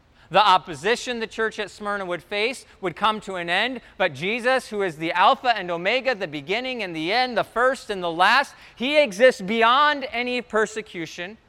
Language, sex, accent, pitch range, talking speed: English, male, American, 195-255 Hz, 190 wpm